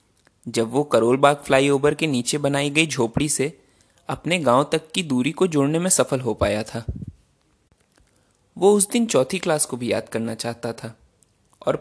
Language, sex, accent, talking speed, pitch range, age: Hindi, male, native, 175 wpm, 120-165 Hz, 20-39